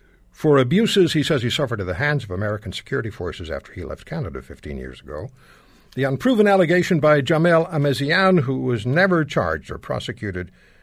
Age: 60-79